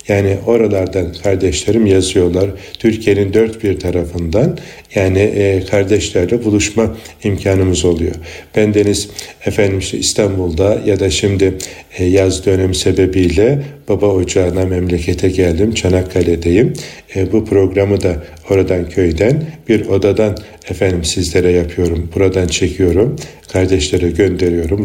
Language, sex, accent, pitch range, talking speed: Turkish, male, native, 90-105 Hz, 105 wpm